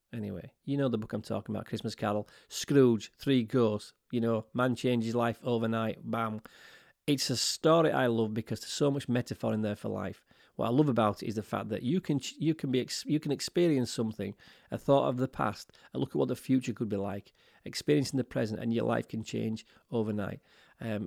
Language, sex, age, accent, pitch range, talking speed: English, male, 30-49, British, 110-135 Hz, 215 wpm